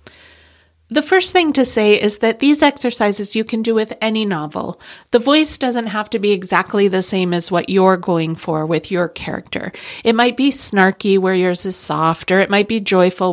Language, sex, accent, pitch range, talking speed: English, female, American, 175-235 Hz, 205 wpm